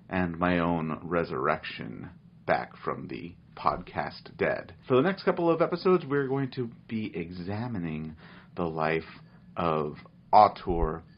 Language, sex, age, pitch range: English, male, 40-59, 85-110 Hz